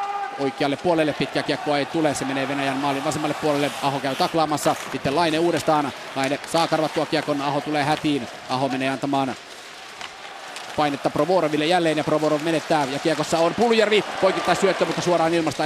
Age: 30-49